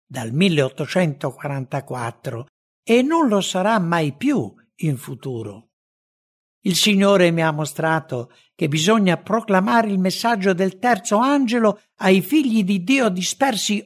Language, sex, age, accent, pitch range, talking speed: English, male, 60-79, Italian, 130-210 Hz, 120 wpm